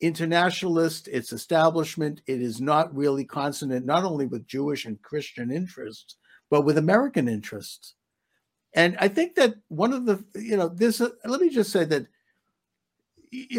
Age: 60-79